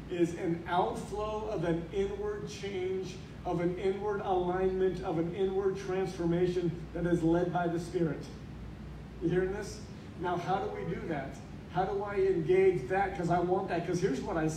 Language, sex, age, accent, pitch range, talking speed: English, male, 40-59, American, 170-190 Hz, 175 wpm